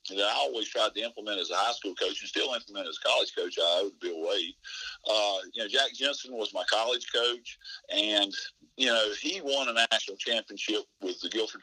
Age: 50-69